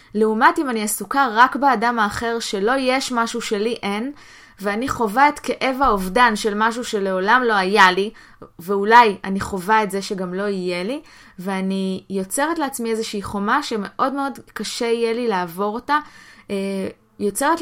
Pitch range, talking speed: 200-260 Hz, 155 wpm